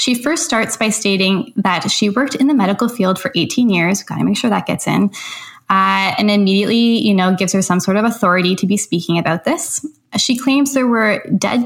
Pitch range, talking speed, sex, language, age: 190-240 Hz, 220 wpm, female, English, 10-29